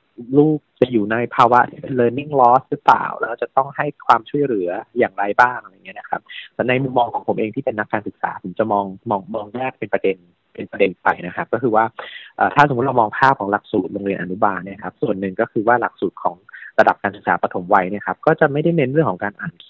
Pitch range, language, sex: 105-130 Hz, Thai, male